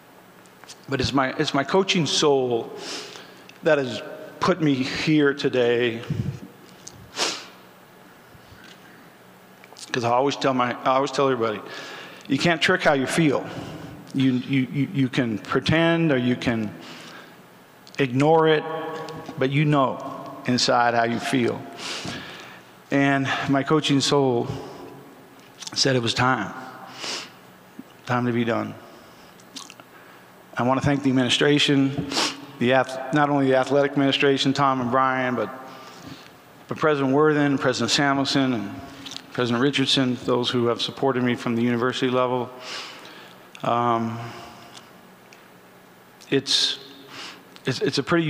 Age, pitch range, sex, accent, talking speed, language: 50-69, 125-140 Hz, male, American, 115 wpm, English